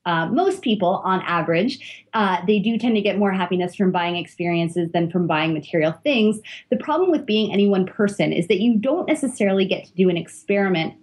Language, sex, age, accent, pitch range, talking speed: English, female, 30-49, American, 180-230 Hz, 205 wpm